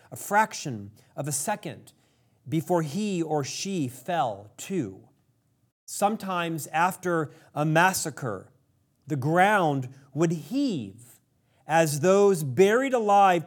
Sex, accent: male, American